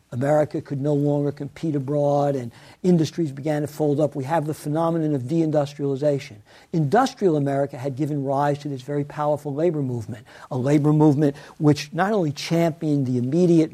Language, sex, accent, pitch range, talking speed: English, male, American, 140-170 Hz, 165 wpm